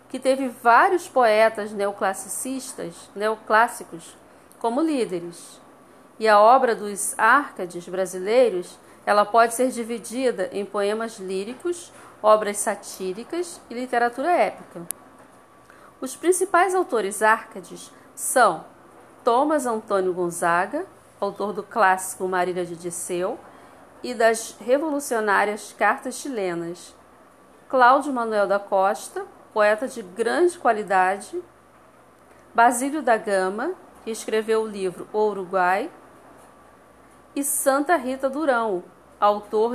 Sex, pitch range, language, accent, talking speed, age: female, 195-265 Hz, Portuguese, Brazilian, 100 wpm, 40-59